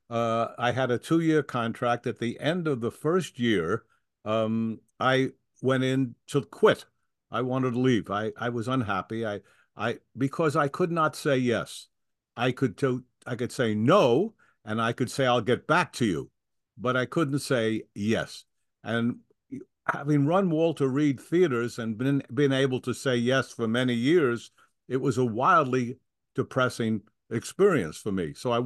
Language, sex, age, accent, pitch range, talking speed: English, male, 50-69, American, 115-140 Hz, 170 wpm